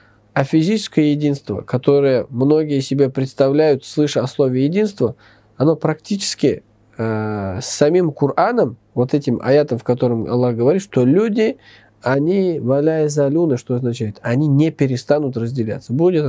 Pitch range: 115-150 Hz